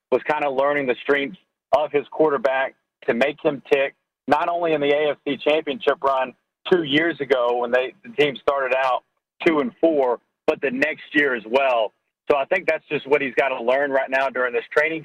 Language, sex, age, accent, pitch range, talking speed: English, male, 40-59, American, 130-165 Hz, 210 wpm